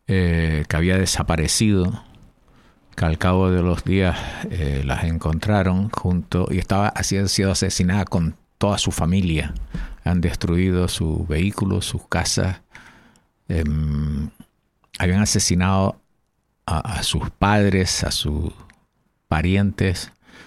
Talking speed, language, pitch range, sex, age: 115 wpm, Spanish, 85-95 Hz, male, 50-69